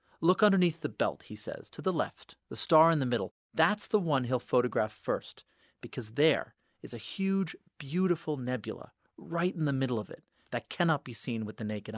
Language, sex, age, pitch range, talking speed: English, male, 40-59, 110-165 Hz, 200 wpm